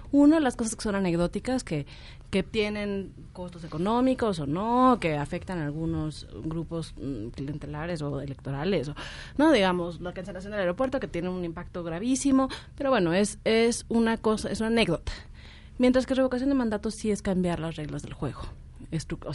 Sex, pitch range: female, 160-200 Hz